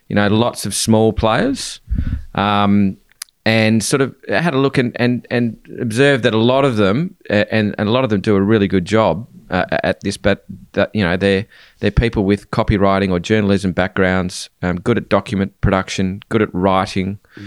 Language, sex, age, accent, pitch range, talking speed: English, male, 20-39, Australian, 95-110 Hz, 190 wpm